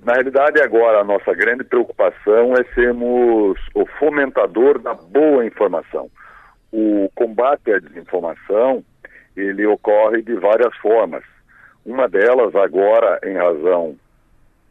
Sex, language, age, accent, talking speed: male, Portuguese, 60-79, Brazilian, 115 wpm